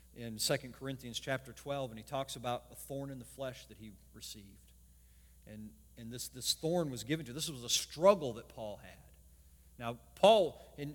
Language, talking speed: English, 195 wpm